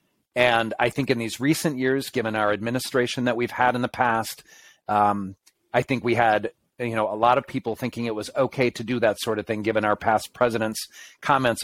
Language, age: English, 40-59